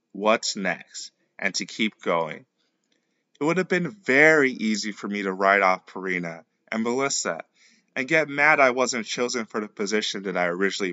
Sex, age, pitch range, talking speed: male, 20-39, 100-135 Hz, 175 wpm